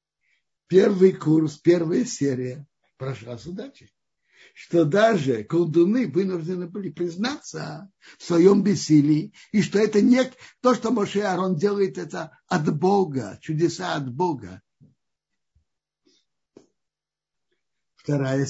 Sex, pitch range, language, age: male, 145-215 Hz, Russian, 60-79